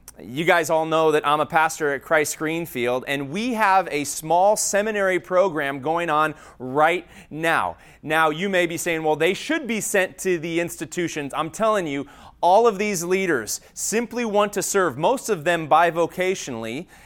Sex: male